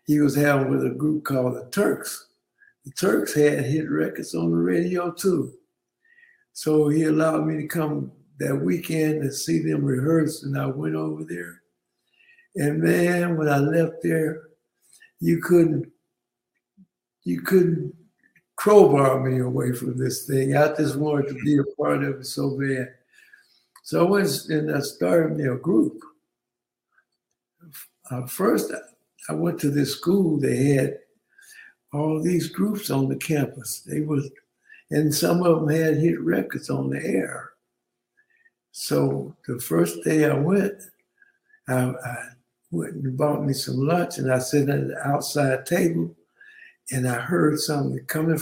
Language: English